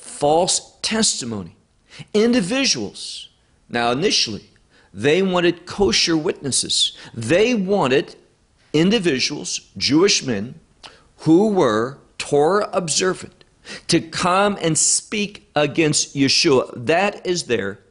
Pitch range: 120-195 Hz